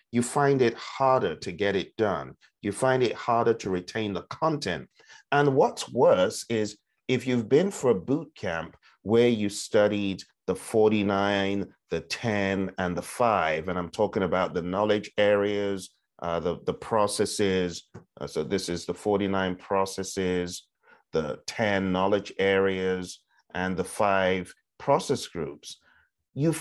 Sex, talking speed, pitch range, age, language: male, 145 wpm, 95-120 Hz, 40-59, English